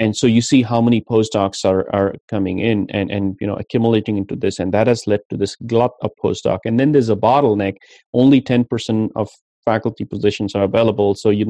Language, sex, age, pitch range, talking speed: English, male, 30-49, 100-115 Hz, 215 wpm